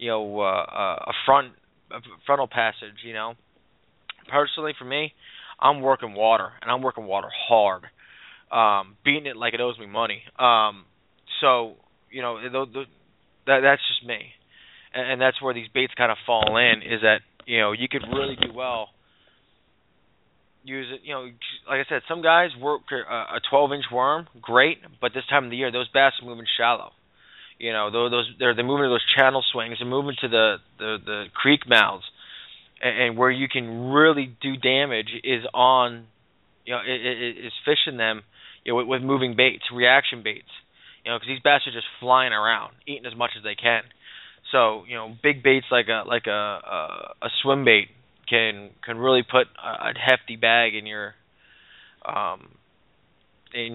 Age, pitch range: 20-39, 115-135 Hz